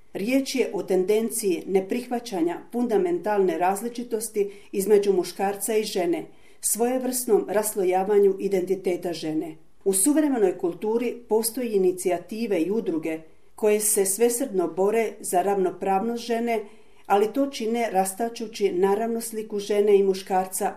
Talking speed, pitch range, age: 110 wpm, 190-235 Hz, 40-59